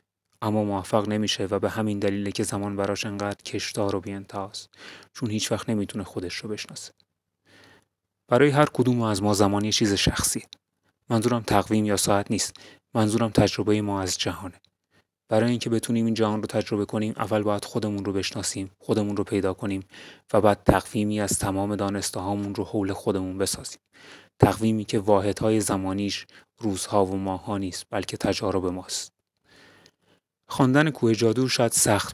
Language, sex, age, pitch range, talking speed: Persian, male, 30-49, 100-110 Hz, 155 wpm